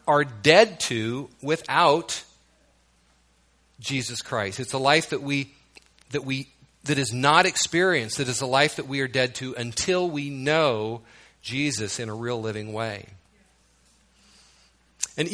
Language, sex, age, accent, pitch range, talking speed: English, male, 40-59, American, 95-140 Hz, 140 wpm